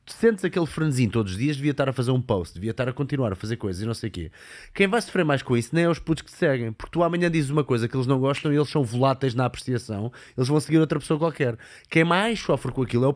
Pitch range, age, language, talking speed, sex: 110-150 Hz, 20-39, Portuguese, 305 wpm, male